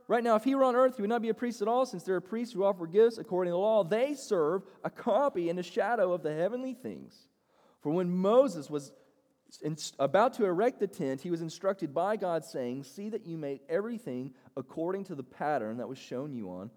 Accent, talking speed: American, 235 wpm